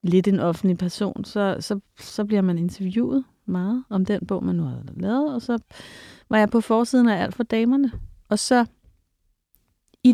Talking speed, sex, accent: 180 wpm, female, native